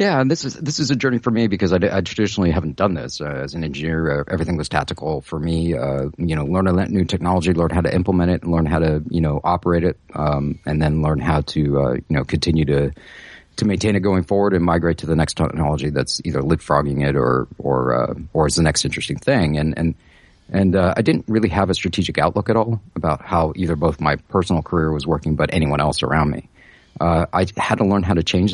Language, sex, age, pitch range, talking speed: English, male, 40-59, 80-95 Hz, 245 wpm